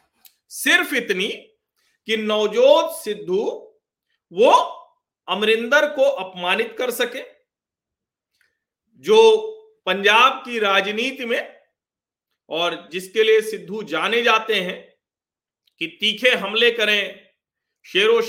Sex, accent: male, native